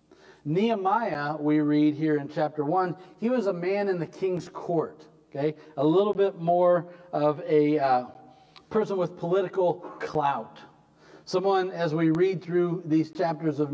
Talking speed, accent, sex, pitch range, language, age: 155 wpm, American, male, 135-170 Hz, English, 40-59